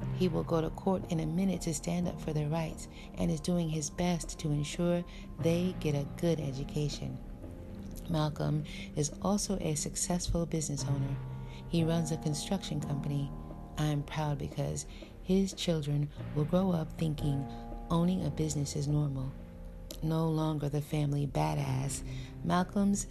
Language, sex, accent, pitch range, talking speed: English, female, American, 140-170 Hz, 150 wpm